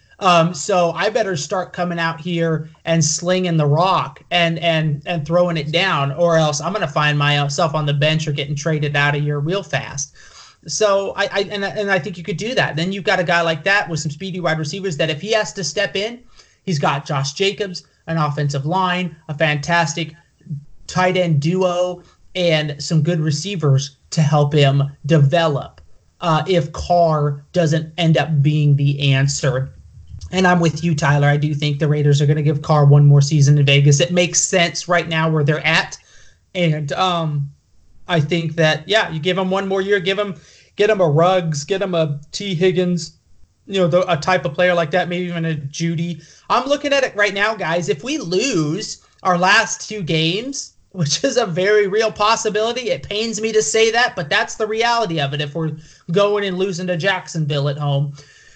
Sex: male